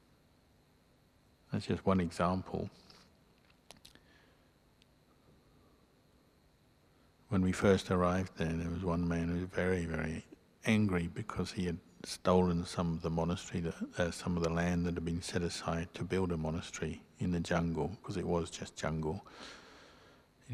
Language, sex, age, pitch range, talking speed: English, male, 60-79, 80-90 Hz, 145 wpm